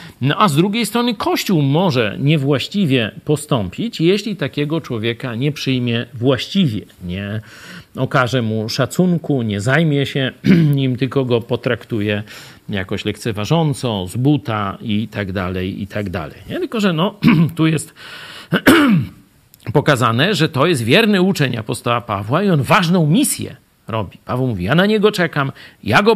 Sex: male